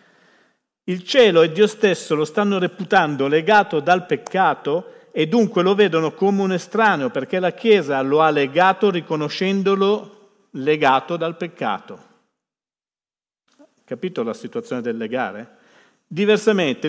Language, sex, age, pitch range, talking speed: Italian, male, 50-69, 140-200 Hz, 120 wpm